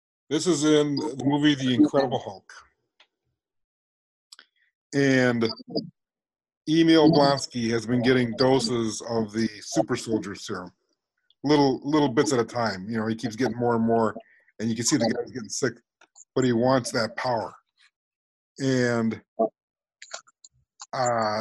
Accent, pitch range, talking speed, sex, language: American, 115-145 Hz, 135 wpm, male, English